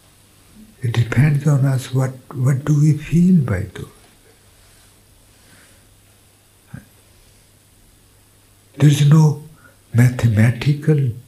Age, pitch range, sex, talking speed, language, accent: 60-79, 95-120 Hz, male, 80 wpm, English, Indian